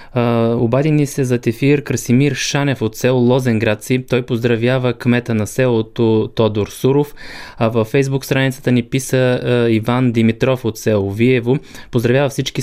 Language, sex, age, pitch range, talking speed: Bulgarian, male, 20-39, 105-125 Hz, 145 wpm